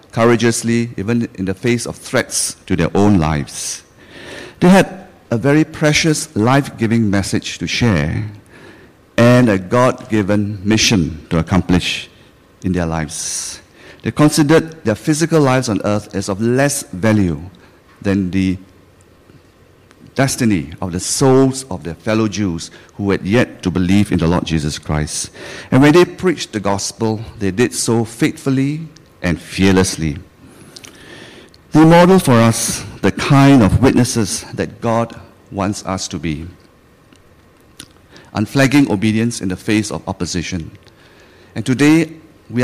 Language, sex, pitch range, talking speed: English, male, 95-125 Hz, 135 wpm